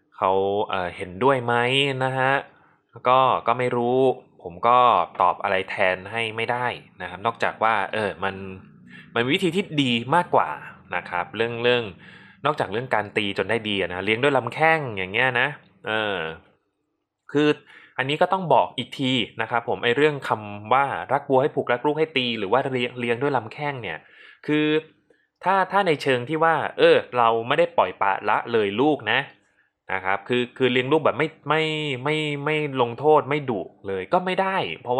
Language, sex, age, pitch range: Thai, male, 20-39, 105-145 Hz